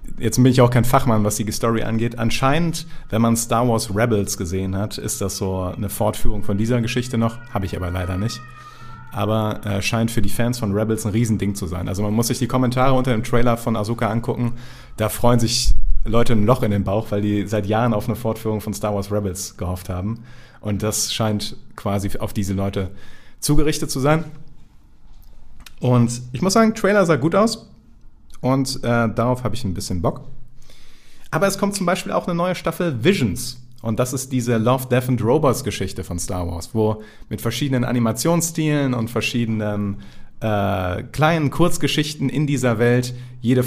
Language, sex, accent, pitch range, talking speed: German, male, German, 105-130 Hz, 190 wpm